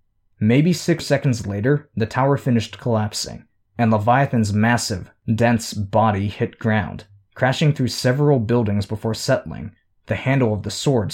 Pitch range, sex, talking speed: 100-120 Hz, male, 140 wpm